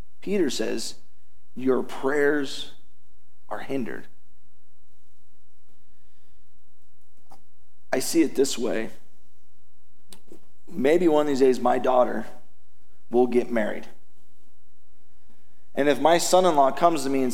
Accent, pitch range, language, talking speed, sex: American, 90-145 Hz, English, 100 wpm, male